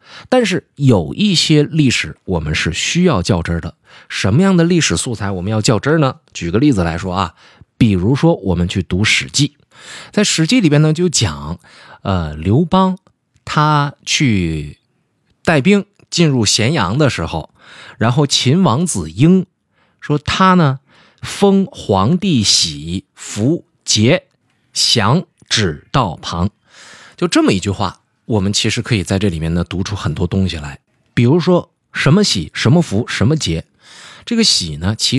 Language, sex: Chinese, male